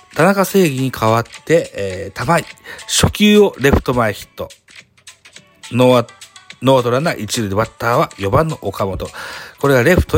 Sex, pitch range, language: male, 100-160 Hz, Japanese